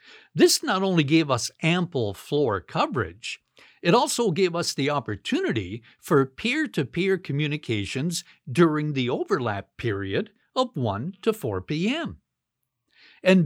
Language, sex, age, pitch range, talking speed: English, male, 60-79, 110-180 Hz, 120 wpm